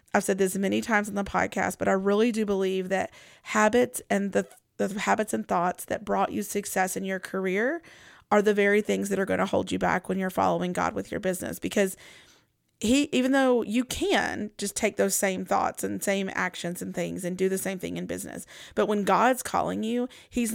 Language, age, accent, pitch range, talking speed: English, 30-49, American, 190-225 Hz, 220 wpm